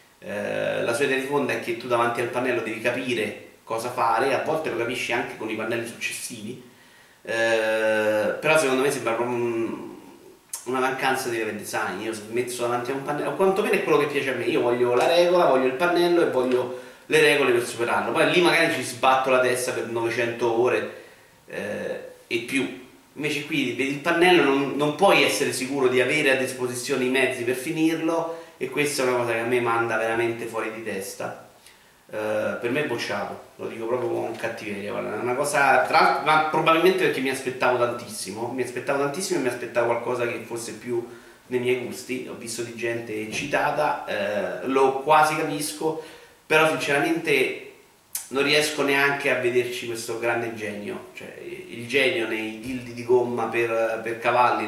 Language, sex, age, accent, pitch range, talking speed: Italian, male, 30-49, native, 115-145 Hz, 180 wpm